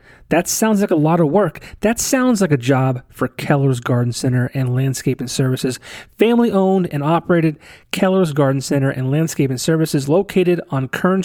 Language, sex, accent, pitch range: English, male, American, 135-165 Hz